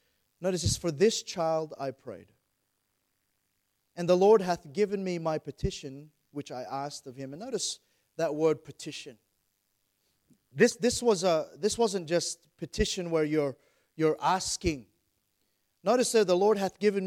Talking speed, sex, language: 150 wpm, male, English